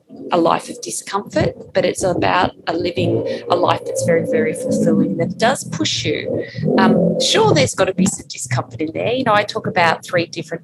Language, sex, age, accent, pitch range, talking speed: English, female, 30-49, Australian, 165-200 Hz, 205 wpm